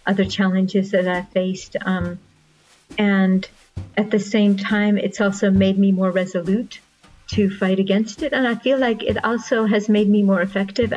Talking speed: 175 wpm